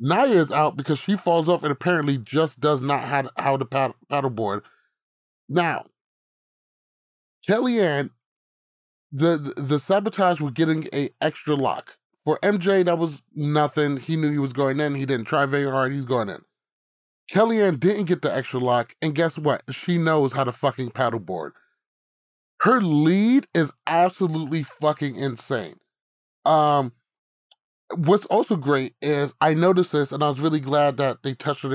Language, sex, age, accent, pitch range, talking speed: English, male, 30-49, American, 135-180 Hz, 165 wpm